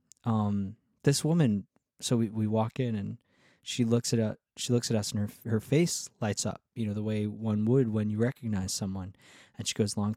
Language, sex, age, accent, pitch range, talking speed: English, male, 20-39, American, 105-130 Hz, 220 wpm